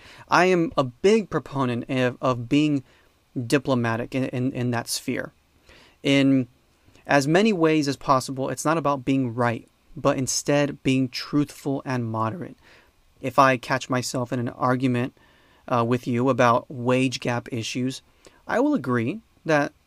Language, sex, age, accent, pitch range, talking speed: English, male, 30-49, American, 125-150 Hz, 150 wpm